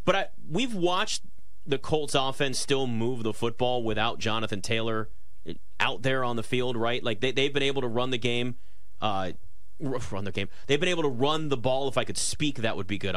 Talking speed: 220 wpm